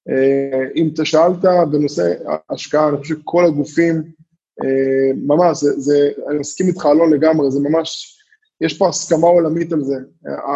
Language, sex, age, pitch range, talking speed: Hebrew, male, 20-39, 145-180 Hz, 155 wpm